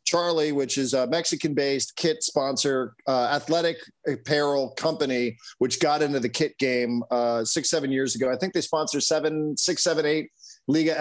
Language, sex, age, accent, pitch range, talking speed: English, male, 40-59, American, 130-160 Hz, 175 wpm